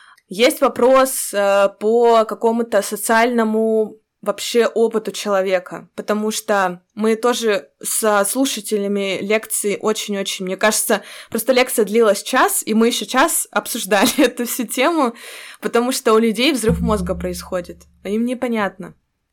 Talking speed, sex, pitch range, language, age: 120 wpm, female, 205-245 Hz, Russian, 20-39